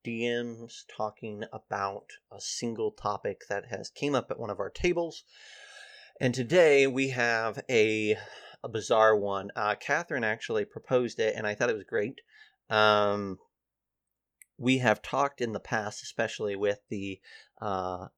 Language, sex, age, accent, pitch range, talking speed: English, male, 30-49, American, 100-140 Hz, 150 wpm